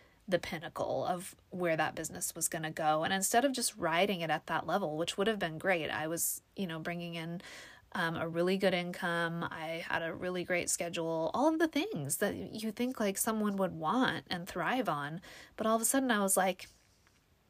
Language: English